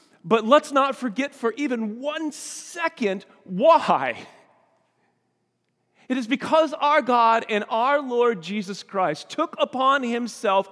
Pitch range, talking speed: 190-265 Hz, 125 wpm